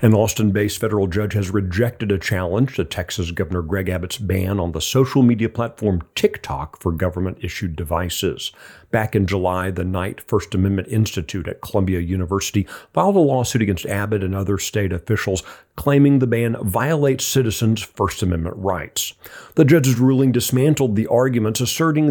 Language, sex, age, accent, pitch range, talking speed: English, male, 40-59, American, 95-130 Hz, 155 wpm